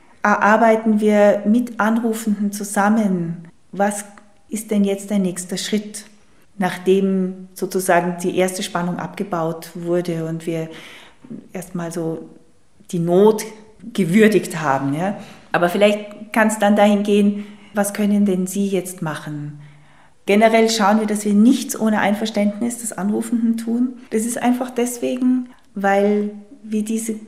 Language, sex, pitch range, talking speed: German, female, 185-220 Hz, 125 wpm